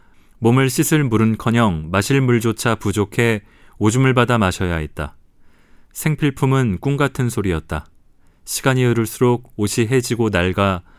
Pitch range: 90-125 Hz